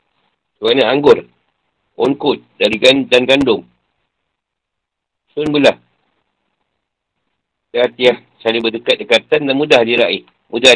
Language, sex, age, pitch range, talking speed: Malay, male, 50-69, 120-145 Hz, 85 wpm